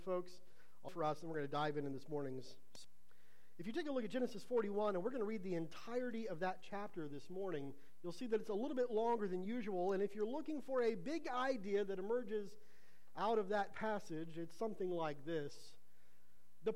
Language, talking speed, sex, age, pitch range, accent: English, 220 wpm, male, 50-69, 140-210 Hz, American